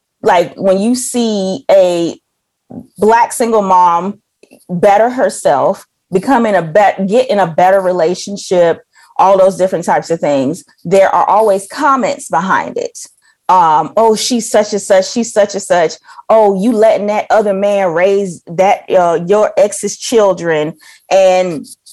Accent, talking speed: American, 145 wpm